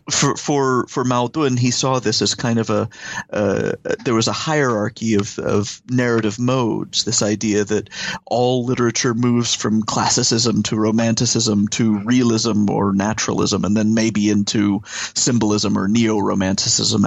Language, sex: English, male